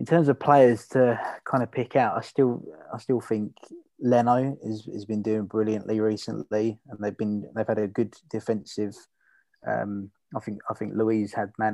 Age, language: 20-39, English